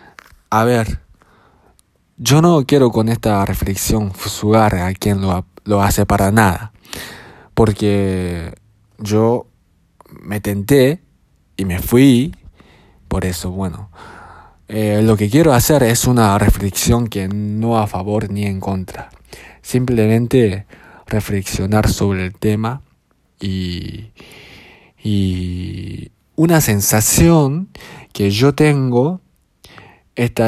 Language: Japanese